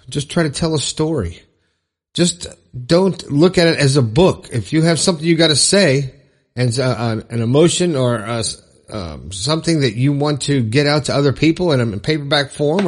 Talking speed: 190 wpm